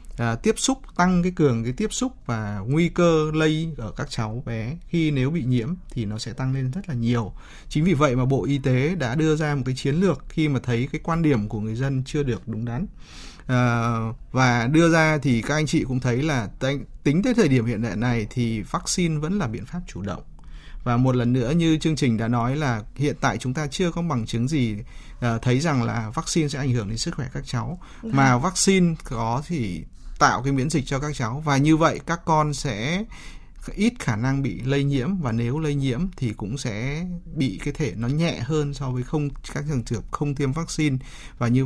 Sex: male